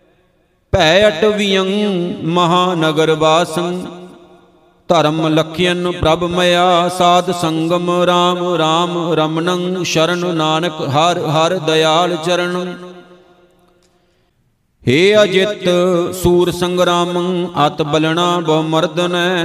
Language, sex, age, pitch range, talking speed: Punjabi, male, 50-69, 160-180 Hz, 75 wpm